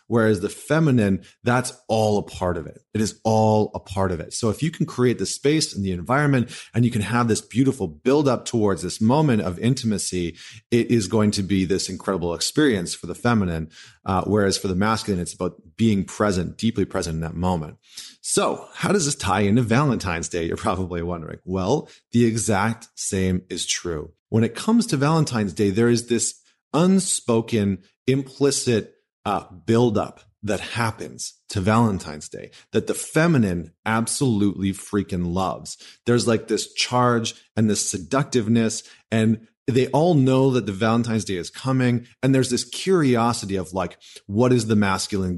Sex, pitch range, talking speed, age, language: male, 95-120 Hz, 175 wpm, 30-49, English